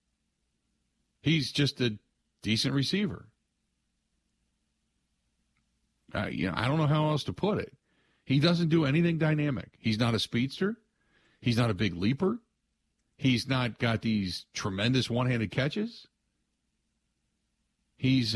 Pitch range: 100-140 Hz